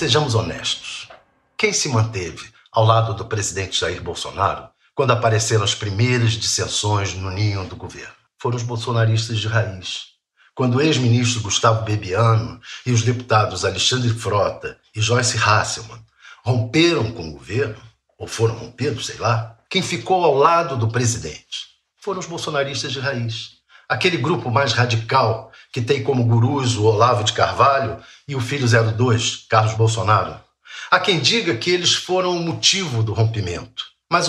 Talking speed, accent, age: 150 wpm, Brazilian, 60-79